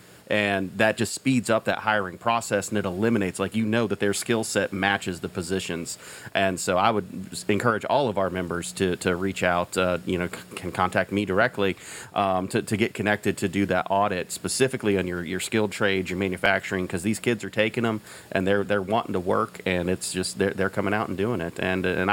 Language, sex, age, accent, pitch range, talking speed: English, male, 30-49, American, 90-105 Hz, 225 wpm